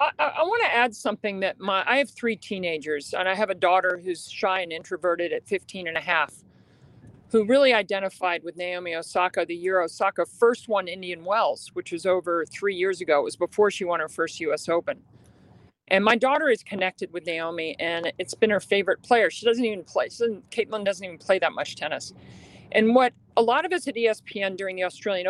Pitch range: 185-255 Hz